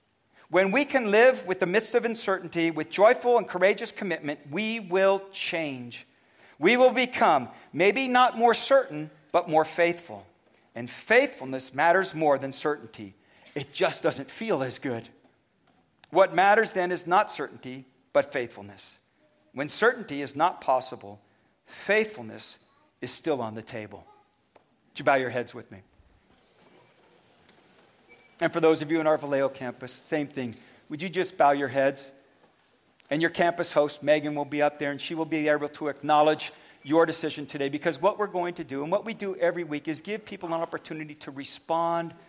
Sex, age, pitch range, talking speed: male, 50-69, 135-195 Hz, 170 wpm